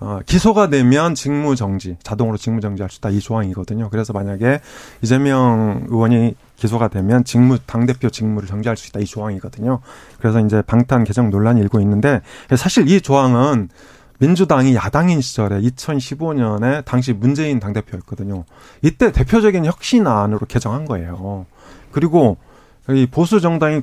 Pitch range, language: 110-155 Hz, Korean